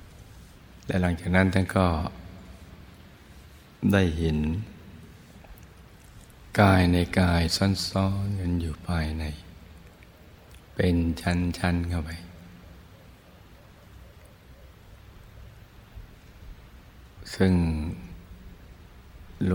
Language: Thai